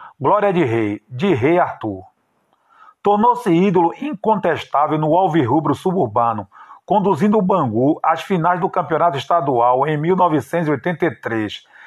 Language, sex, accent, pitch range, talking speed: Portuguese, male, Brazilian, 140-190 Hz, 110 wpm